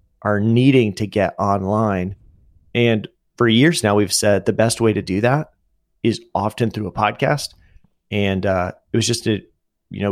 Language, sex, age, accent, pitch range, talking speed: English, male, 30-49, American, 100-115 Hz, 180 wpm